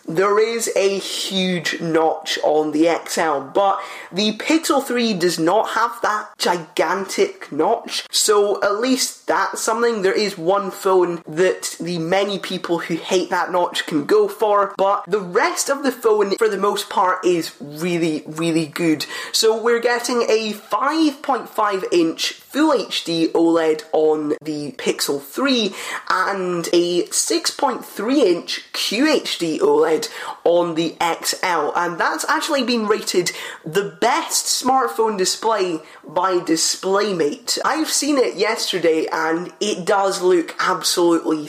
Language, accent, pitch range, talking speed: English, British, 170-235 Hz, 135 wpm